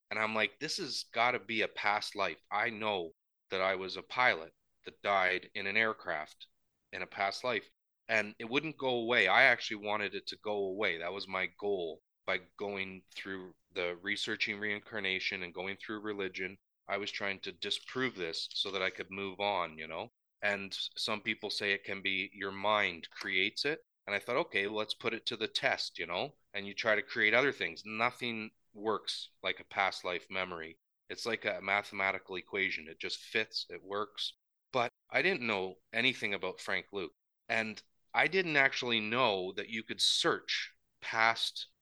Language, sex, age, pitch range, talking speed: English, male, 30-49, 95-115 Hz, 190 wpm